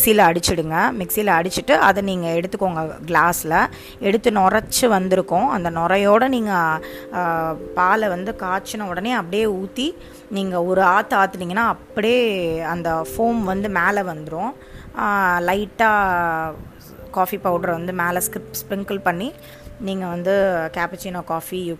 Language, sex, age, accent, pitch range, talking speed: Tamil, female, 20-39, native, 175-215 Hz, 120 wpm